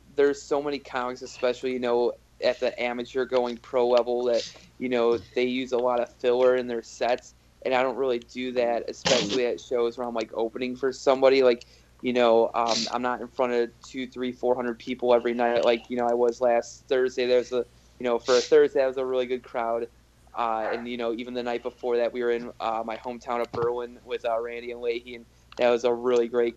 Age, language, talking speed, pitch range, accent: 20-39, English, 235 wpm, 120-130 Hz, American